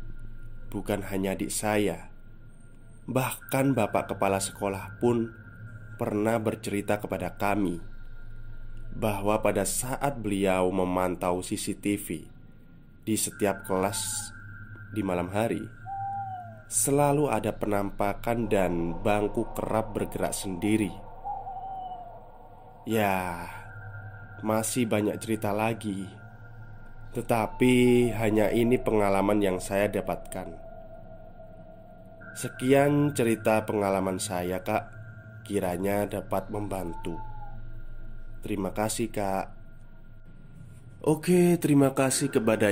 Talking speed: 85 wpm